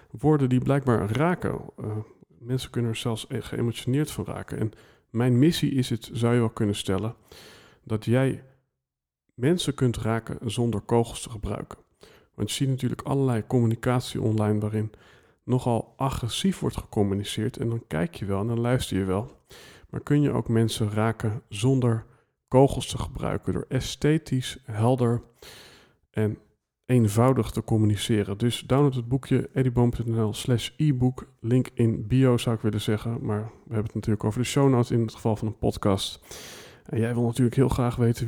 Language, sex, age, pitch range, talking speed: Dutch, male, 40-59, 110-130 Hz, 165 wpm